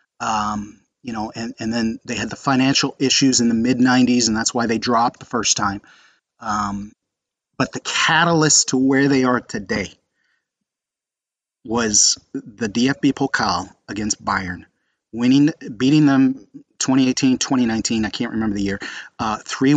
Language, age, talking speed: English, 30-49, 150 wpm